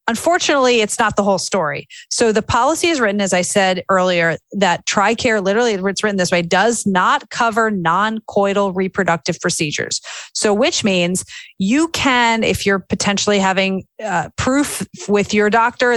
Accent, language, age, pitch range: American, English, 30-49, 185-230 Hz